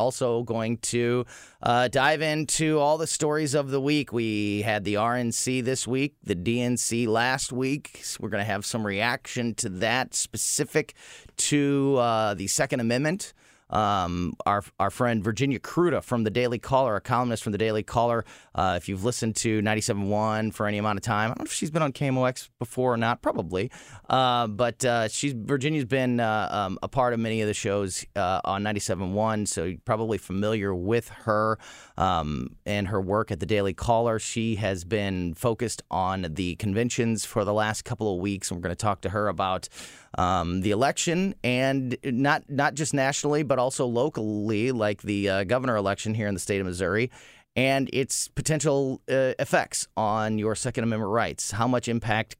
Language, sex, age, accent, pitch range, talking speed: English, male, 30-49, American, 105-130 Hz, 190 wpm